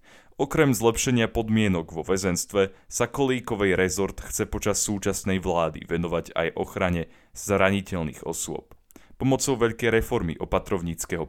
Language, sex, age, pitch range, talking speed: Slovak, male, 30-49, 85-110 Hz, 110 wpm